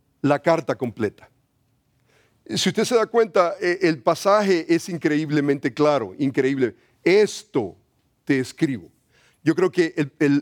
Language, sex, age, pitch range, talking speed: English, male, 50-69, 135-185 Hz, 125 wpm